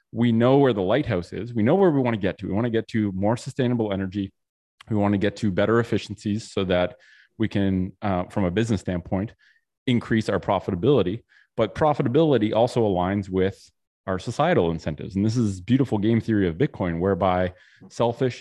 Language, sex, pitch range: English, male, 95-120 Hz